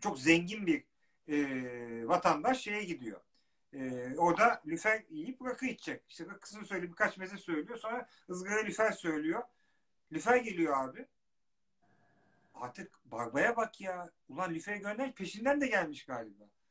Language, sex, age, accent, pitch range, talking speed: Turkish, male, 50-69, native, 170-250 Hz, 135 wpm